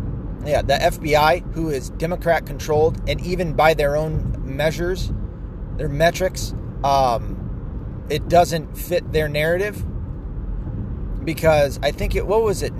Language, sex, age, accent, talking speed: English, male, 30-49, American, 125 wpm